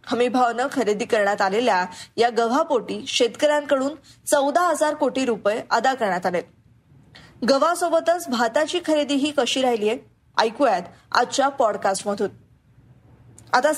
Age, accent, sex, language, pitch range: 20-39, native, female, Marathi, 215-280 Hz